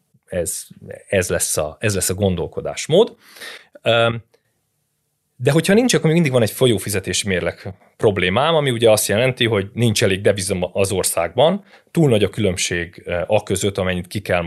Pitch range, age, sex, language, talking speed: 95-120 Hz, 30-49, male, Hungarian, 150 wpm